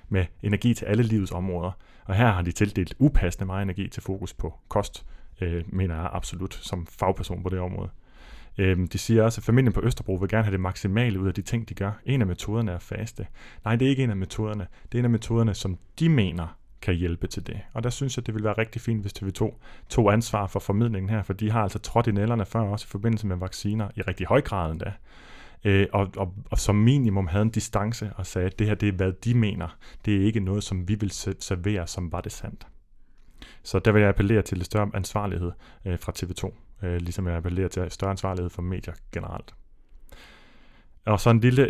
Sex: male